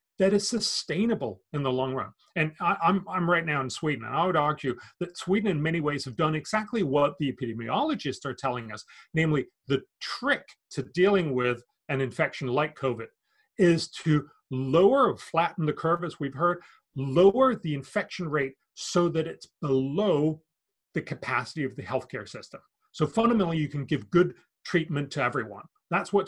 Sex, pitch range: male, 135-185 Hz